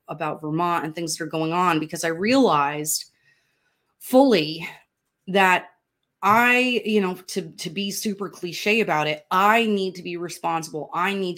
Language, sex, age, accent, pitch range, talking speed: English, female, 30-49, American, 155-200 Hz, 160 wpm